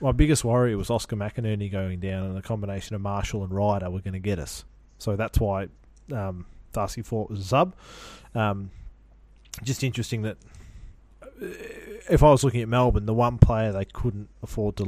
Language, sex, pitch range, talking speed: English, male, 100-125 Hz, 185 wpm